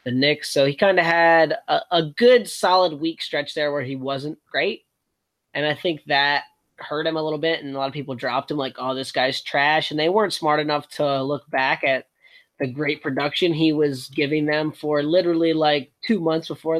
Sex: male